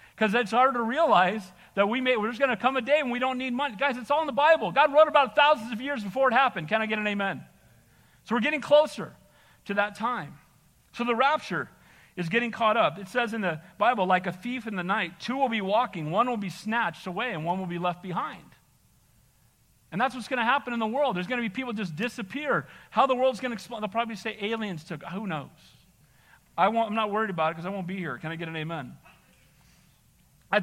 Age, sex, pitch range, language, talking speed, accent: 40-59, male, 190-255 Hz, English, 250 wpm, American